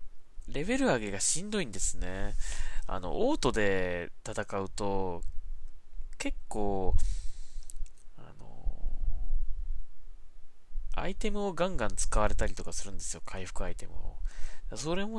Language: Japanese